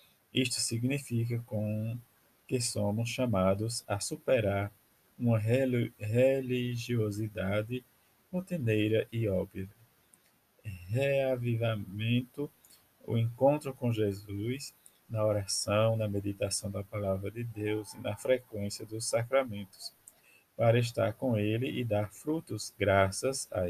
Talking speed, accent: 100 wpm, Brazilian